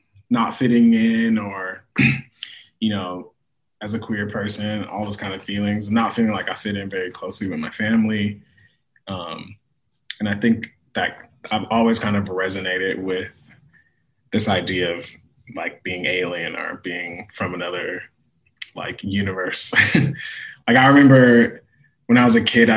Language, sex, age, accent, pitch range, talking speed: English, male, 20-39, American, 100-125 Hz, 150 wpm